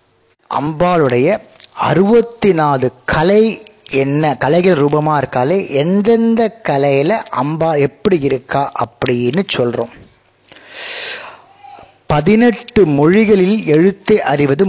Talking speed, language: 80 wpm, Tamil